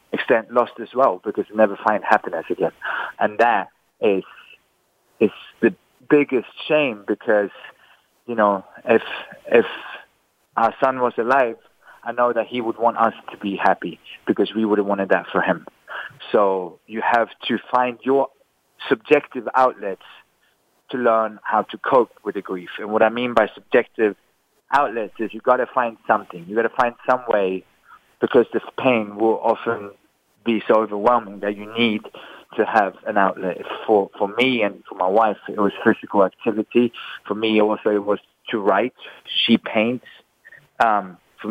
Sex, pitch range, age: male, 100-120 Hz, 40-59